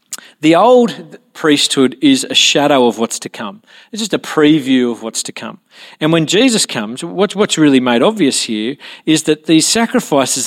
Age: 40-59